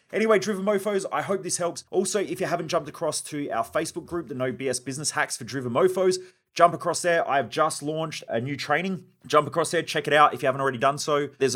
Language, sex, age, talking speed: English, male, 30-49, 250 wpm